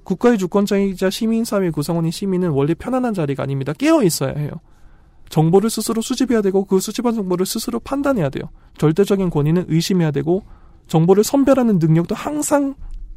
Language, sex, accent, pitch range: Korean, male, native, 145-200 Hz